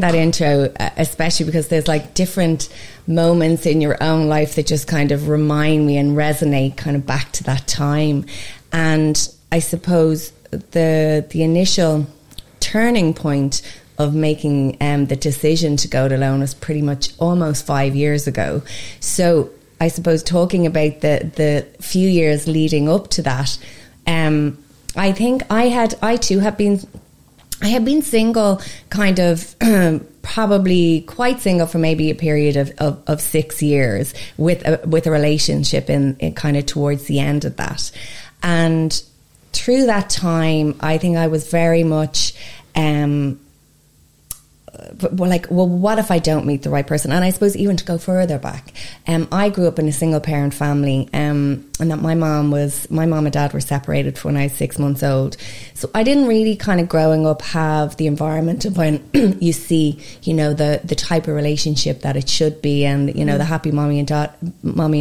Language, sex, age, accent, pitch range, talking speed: English, female, 30-49, Irish, 145-170 Hz, 180 wpm